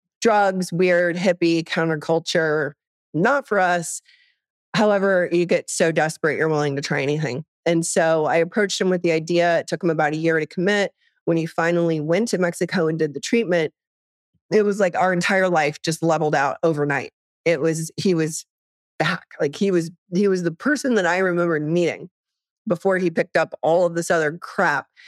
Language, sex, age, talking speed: English, female, 30-49, 185 wpm